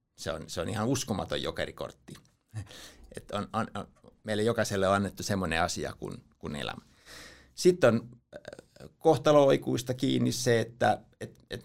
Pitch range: 95-125 Hz